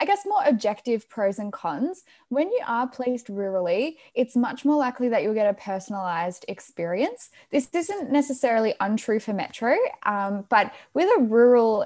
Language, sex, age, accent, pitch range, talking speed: English, female, 10-29, Australian, 185-240 Hz, 165 wpm